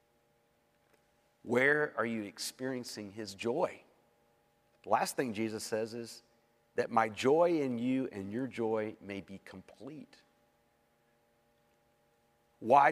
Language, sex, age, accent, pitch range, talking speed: English, male, 50-69, American, 115-135 Hz, 110 wpm